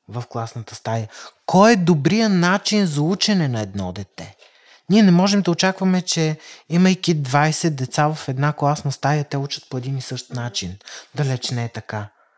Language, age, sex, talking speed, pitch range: Bulgarian, 30-49, male, 175 wpm, 135-190 Hz